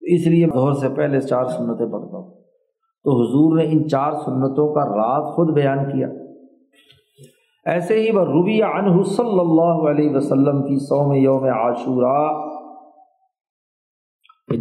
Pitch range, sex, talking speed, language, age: 140-170 Hz, male, 130 wpm, Urdu, 50-69